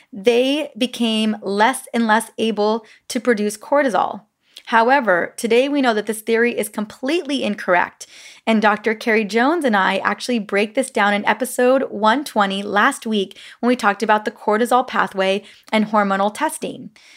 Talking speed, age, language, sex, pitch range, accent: 155 wpm, 20-39, English, female, 200-245 Hz, American